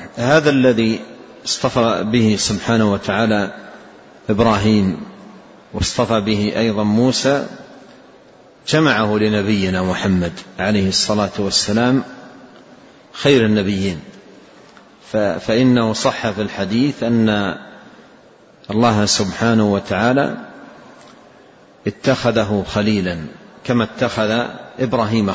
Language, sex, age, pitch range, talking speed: Arabic, male, 50-69, 105-120 Hz, 75 wpm